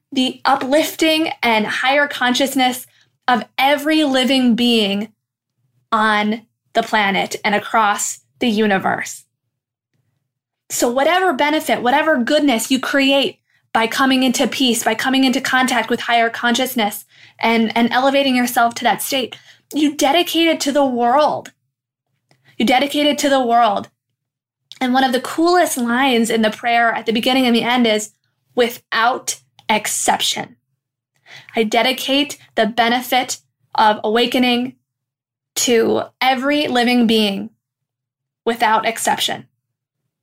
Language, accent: English, American